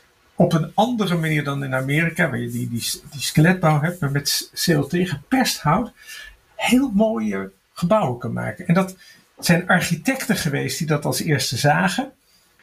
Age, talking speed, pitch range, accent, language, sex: 50-69, 155 wpm, 150-195 Hz, Dutch, English, male